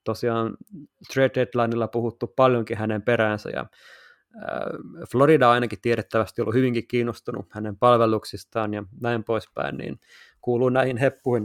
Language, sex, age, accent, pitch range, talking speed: Finnish, male, 20-39, native, 110-130 Hz, 130 wpm